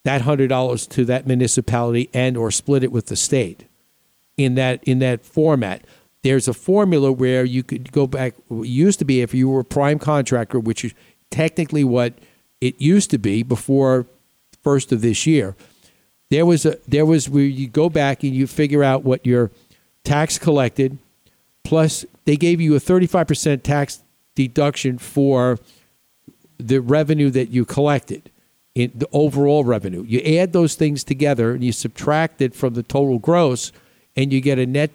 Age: 50-69